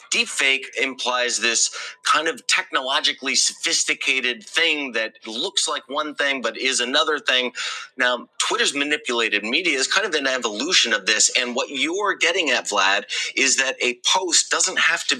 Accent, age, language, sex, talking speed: American, 30-49, English, male, 160 wpm